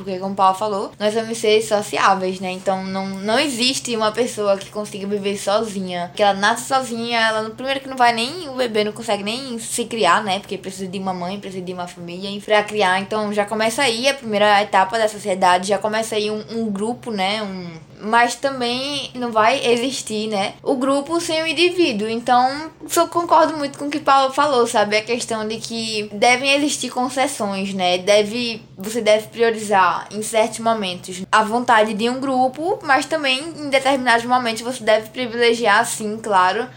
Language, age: Portuguese, 10-29